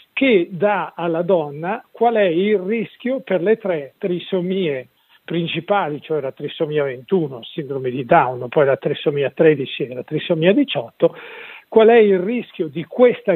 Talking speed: 155 wpm